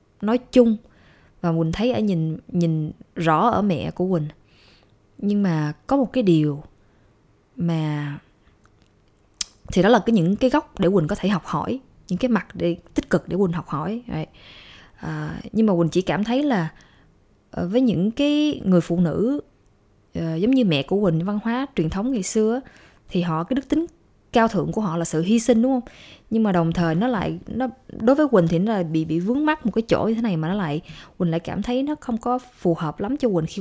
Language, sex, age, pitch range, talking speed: Vietnamese, female, 20-39, 155-225 Hz, 220 wpm